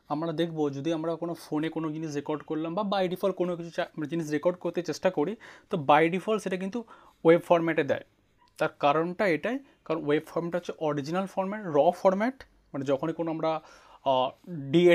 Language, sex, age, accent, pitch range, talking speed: Bengali, male, 30-49, native, 155-190 Hz, 155 wpm